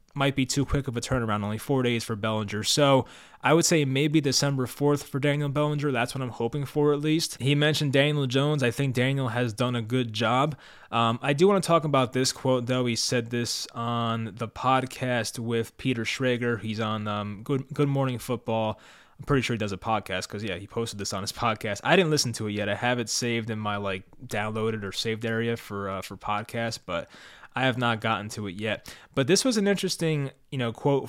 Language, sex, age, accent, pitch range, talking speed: English, male, 20-39, American, 110-140 Hz, 225 wpm